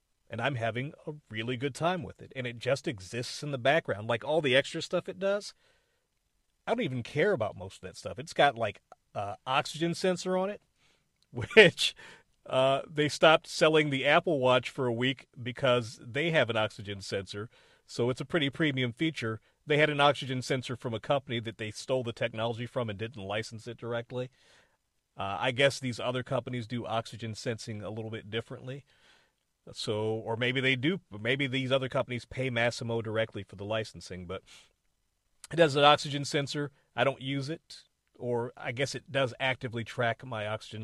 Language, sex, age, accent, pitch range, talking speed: English, male, 40-59, American, 115-140 Hz, 190 wpm